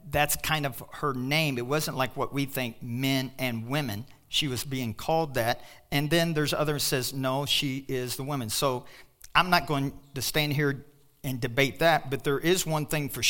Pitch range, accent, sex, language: 120-150 Hz, American, male, English